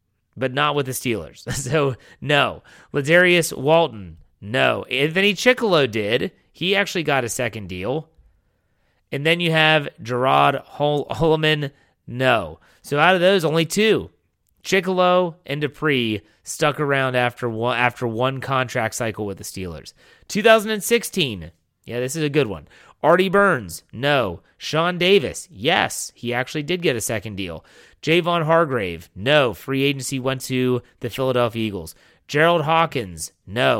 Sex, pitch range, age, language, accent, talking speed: male, 110-160 Hz, 30-49, English, American, 140 wpm